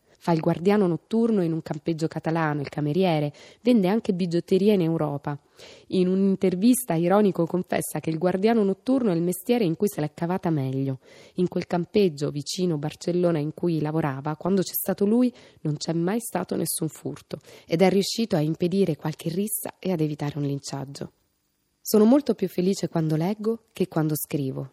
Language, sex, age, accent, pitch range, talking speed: Italian, female, 20-39, native, 150-195 Hz, 170 wpm